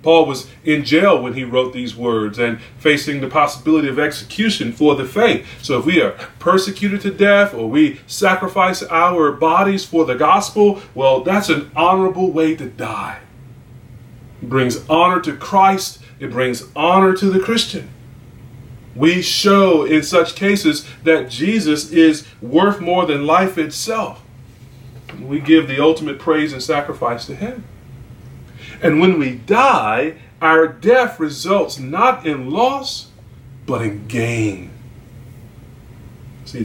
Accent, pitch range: American, 120-160 Hz